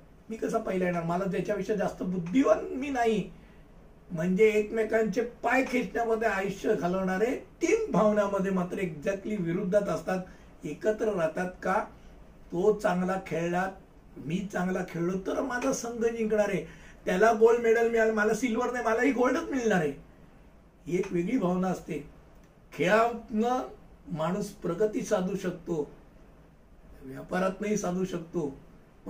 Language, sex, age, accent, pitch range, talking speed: Hindi, male, 60-79, native, 185-230 Hz, 95 wpm